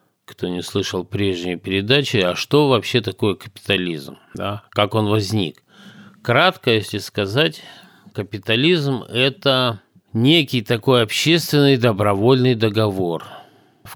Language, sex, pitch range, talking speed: Russian, male, 100-135 Hz, 105 wpm